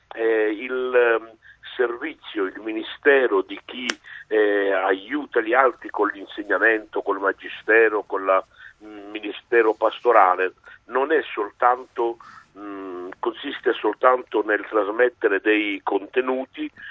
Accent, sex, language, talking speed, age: native, male, Italian, 105 wpm, 60-79